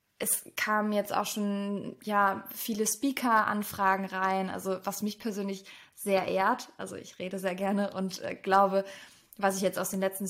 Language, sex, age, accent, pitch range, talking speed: German, female, 20-39, German, 195-230 Hz, 170 wpm